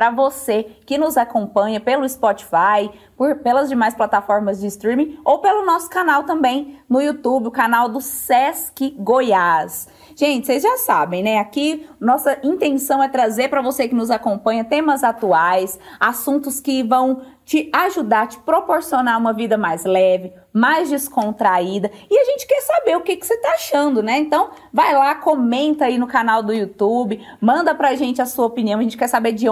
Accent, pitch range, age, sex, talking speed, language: Brazilian, 215-280 Hz, 20-39, female, 175 wpm, Portuguese